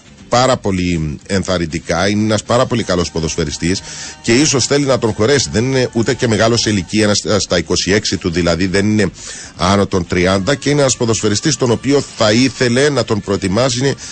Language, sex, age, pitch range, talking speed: Greek, male, 40-59, 90-120 Hz, 180 wpm